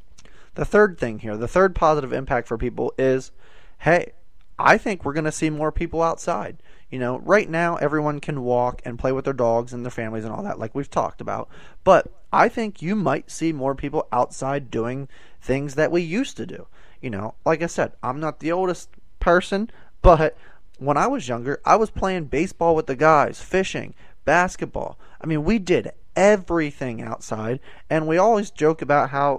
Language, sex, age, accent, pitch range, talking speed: English, male, 20-39, American, 125-170 Hz, 195 wpm